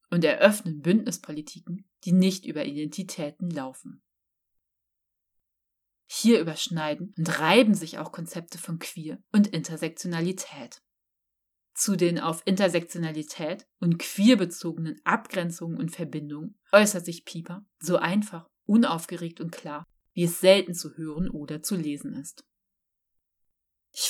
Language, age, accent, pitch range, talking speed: German, 30-49, German, 155-190 Hz, 115 wpm